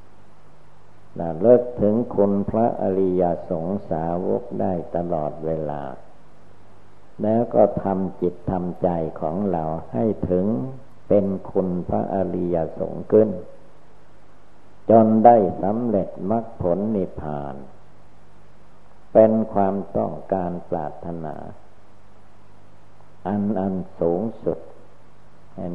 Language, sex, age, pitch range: Thai, male, 60-79, 85-100 Hz